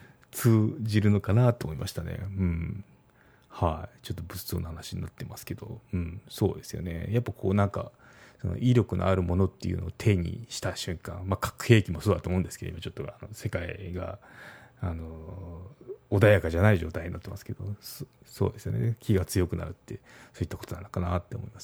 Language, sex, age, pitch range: Japanese, male, 30-49, 90-120 Hz